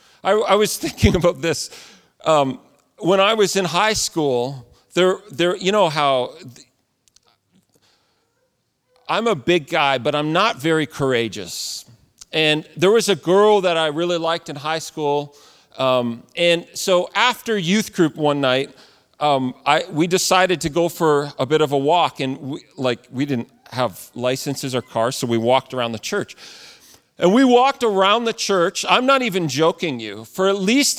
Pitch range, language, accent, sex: 150-215 Hz, English, American, male